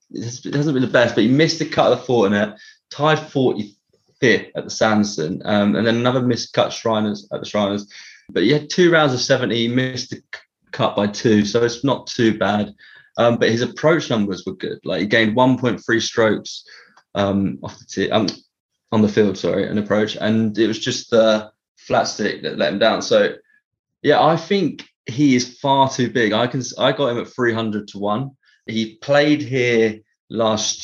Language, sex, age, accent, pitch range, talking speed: English, male, 20-39, British, 105-120 Hz, 200 wpm